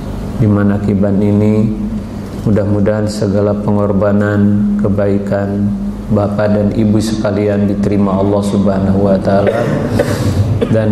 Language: Indonesian